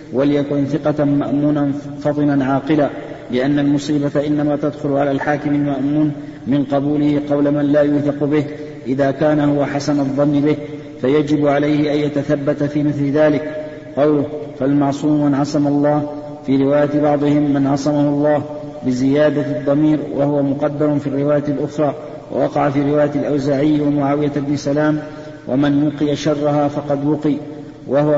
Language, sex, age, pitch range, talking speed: Arabic, male, 50-69, 145-150 Hz, 135 wpm